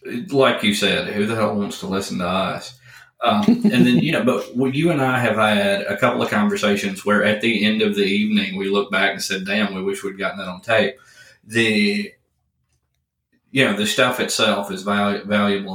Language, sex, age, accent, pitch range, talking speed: English, male, 30-49, American, 100-150 Hz, 210 wpm